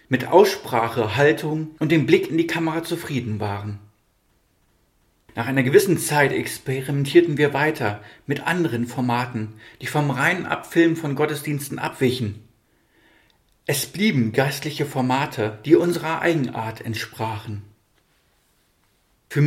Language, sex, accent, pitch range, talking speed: German, male, German, 115-165 Hz, 115 wpm